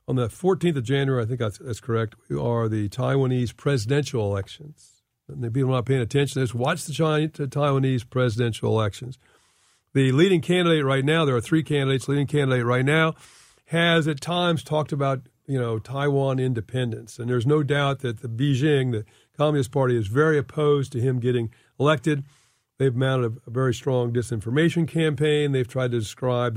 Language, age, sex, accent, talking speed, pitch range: English, 50-69, male, American, 180 wpm, 120-145 Hz